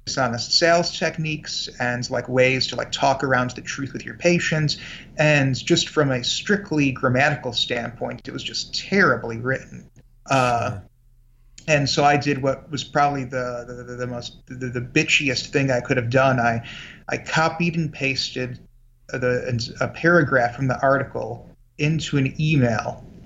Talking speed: 160 wpm